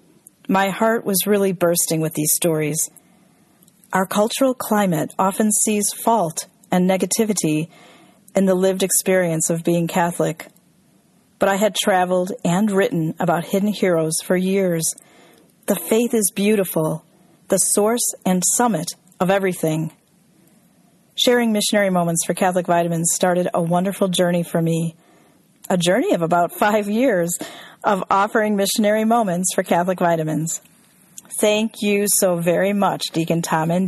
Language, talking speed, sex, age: English, 135 wpm, female, 40-59